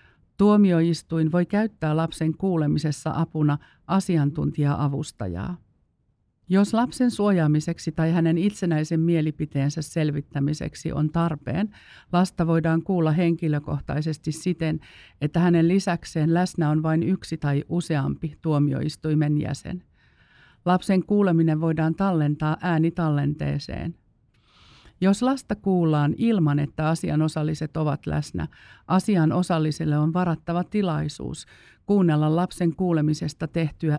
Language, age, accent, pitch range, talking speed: Finnish, 50-69, native, 150-175 Hz, 95 wpm